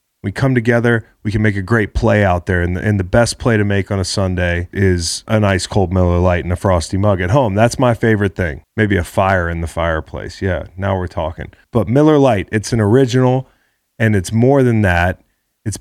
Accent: American